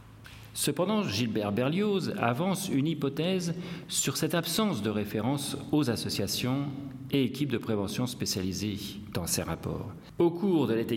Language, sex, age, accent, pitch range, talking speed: French, male, 50-69, French, 110-165 Hz, 135 wpm